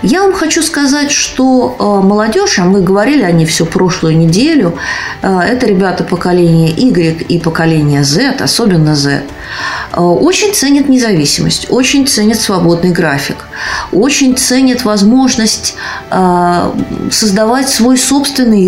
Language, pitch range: Russian, 170-245 Hz